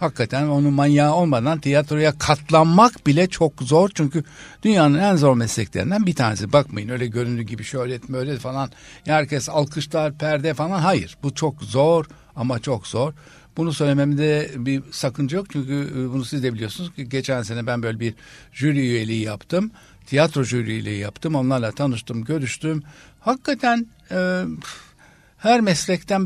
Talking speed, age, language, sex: 145 wpm, 60-79, Turkish, male